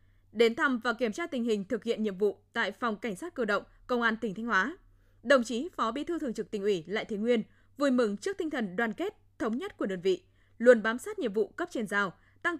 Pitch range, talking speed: 205-280 Hz, 260 wpm